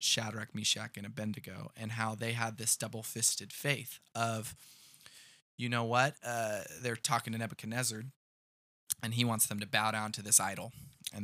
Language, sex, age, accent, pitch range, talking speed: English, male, 20-39, American, 115-145 Hz, 165 wpm